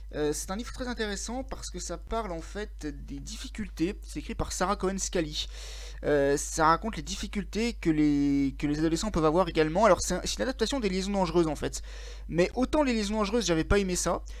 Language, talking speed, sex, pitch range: French, 215 wpm, male, 150-210 Hz